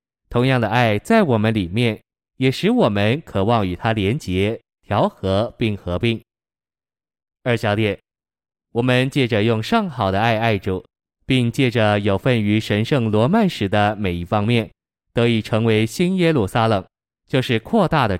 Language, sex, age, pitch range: Chinese, male, 20-39, 100-125 Hz